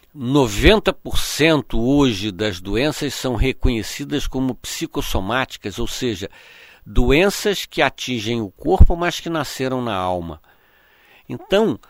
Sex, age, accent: male, 60-79, Brazilian